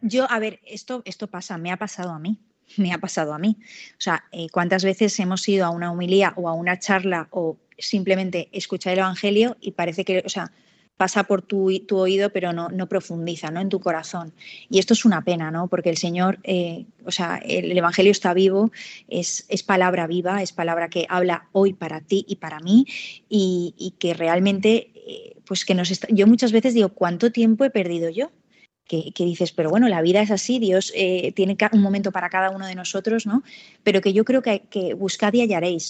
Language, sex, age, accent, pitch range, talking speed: Spanish, female, 20-39, Spanish, 180-220 Hz, 215 wpm